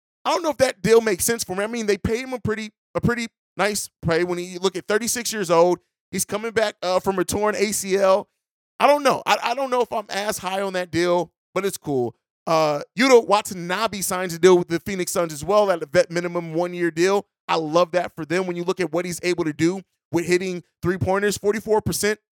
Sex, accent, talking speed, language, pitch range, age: male, American, 240 wpm, English, 175-210 Hz, 30-49